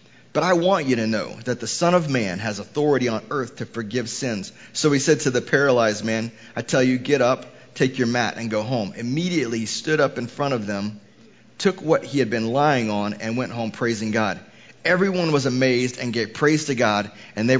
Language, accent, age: English, American, 30-49